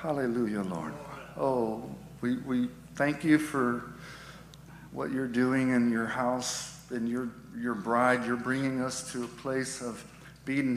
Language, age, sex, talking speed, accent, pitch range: English, 50-69, male, 145 wpm, American, 140-165 Hz